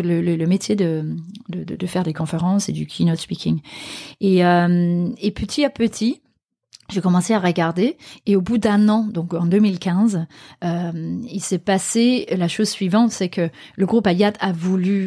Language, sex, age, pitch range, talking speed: French, female, 30-49, 170-205 Hz, 185 wpm